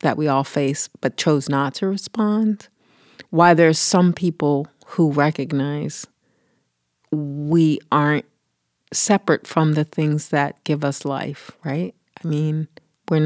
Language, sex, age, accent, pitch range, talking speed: English, female, 40-59, American, 145-170 Hz, 130 wpm